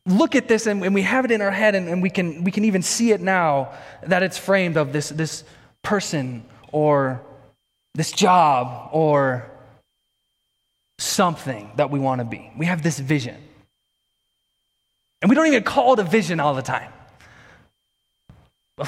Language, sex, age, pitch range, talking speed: English, male, 20-39, 130-190 Hz, 170 wpm